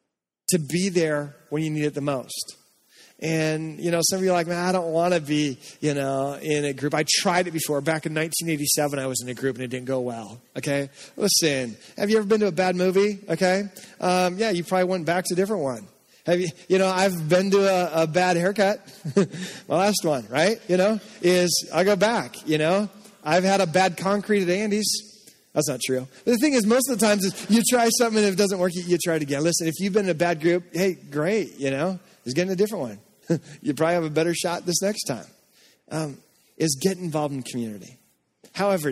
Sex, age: male, 30-49